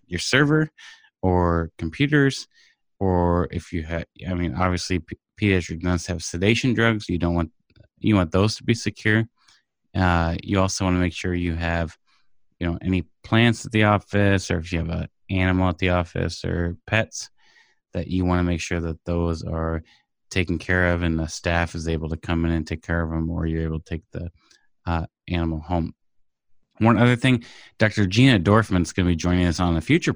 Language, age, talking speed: English, 20-39, 200 wpm